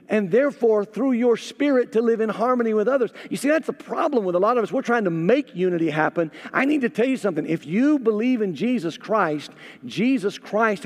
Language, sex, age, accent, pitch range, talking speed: English, male, 50-69, American, 175-235 Hz, 225 wpm